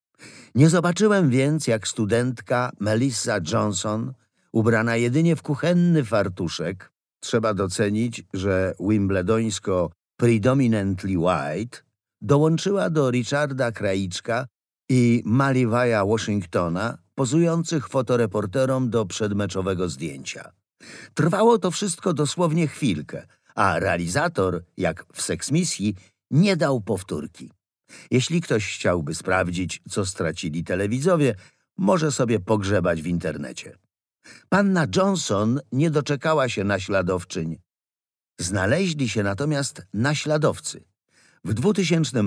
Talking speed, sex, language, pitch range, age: 95 wpm, male, Polish, 100-145 Hz, 50-69